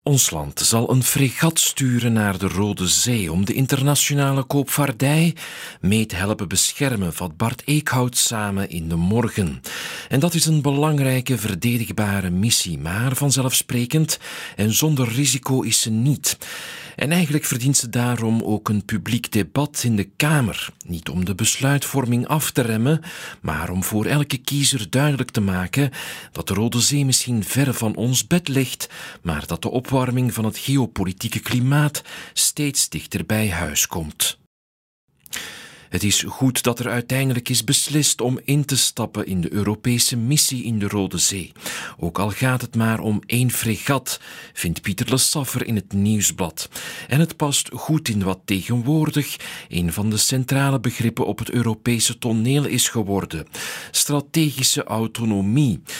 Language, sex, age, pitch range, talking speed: Dutch, male, 40-59, 100-135 Hz, 155 wpm